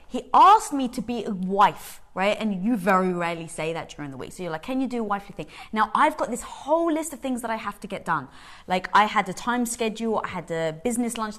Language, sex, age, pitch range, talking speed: English, female, 20-39, 180-215 Hz, 270 wpm